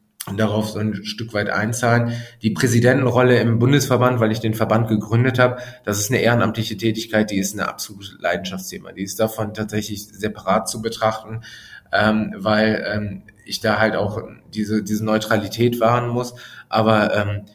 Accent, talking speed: German, 165 wpm